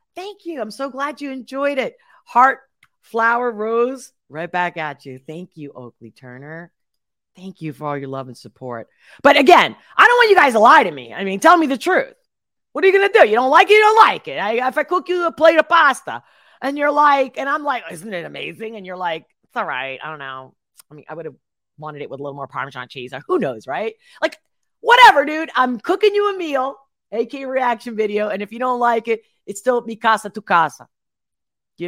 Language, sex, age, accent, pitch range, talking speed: English, female, 40-59, American, 175-275 Hz, 235 wpm